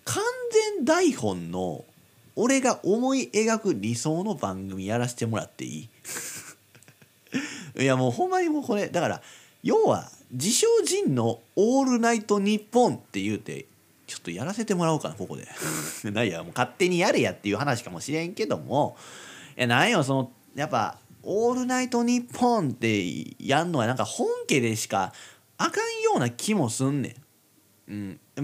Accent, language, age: native, Japanese, 40-59